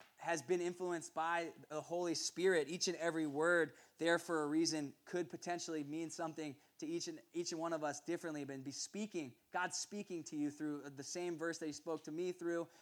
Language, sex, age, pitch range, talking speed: English, male, 20-39, 145-170 Hz, 210 wpm